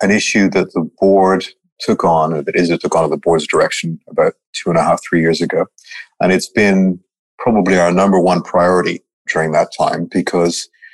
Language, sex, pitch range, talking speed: English, male, 85-130 Hz, 195 wpm